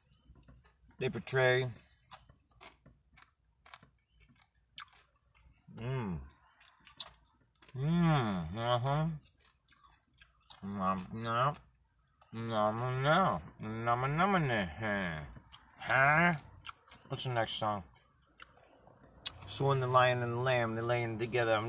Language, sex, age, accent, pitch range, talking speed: English, male, 30-49, American, 110-125 Hz, 65 wpm